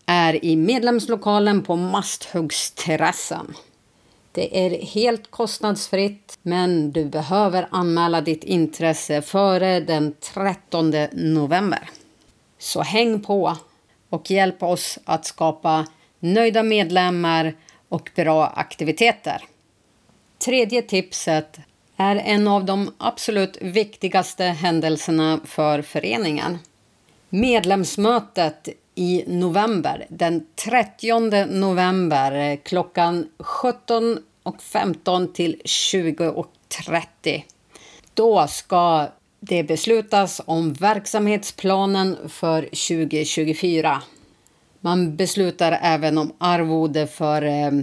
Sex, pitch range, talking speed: female, 160-200 Hz, 85 wpm